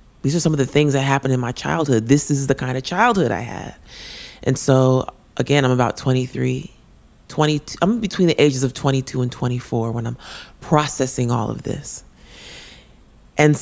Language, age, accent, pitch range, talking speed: English, 30-49, American, 120-145 Hz, 180 wpm